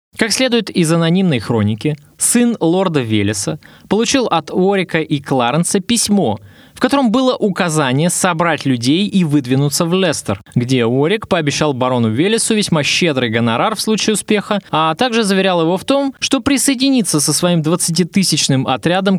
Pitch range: 130-205 Hz